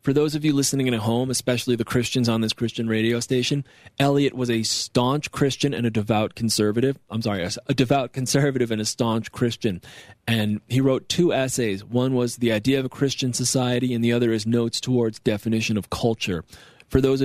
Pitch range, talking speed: 110-135 Hz, 200 wpm